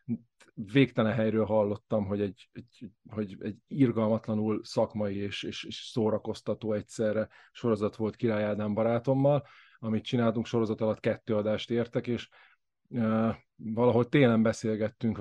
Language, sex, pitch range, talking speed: Hungarian, male, 110-125 Hz, 125 wpm